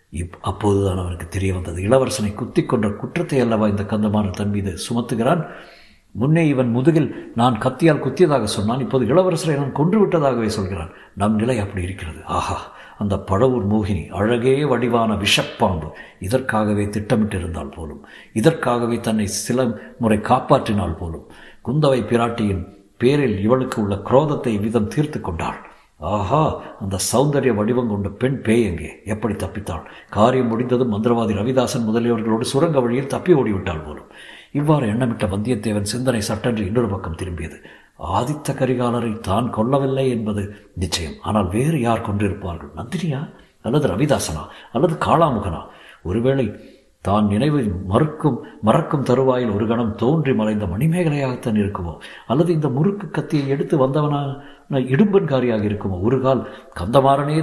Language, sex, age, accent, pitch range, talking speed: Tamil, male, 60-79, native, 105-135 Hz, 125 wpm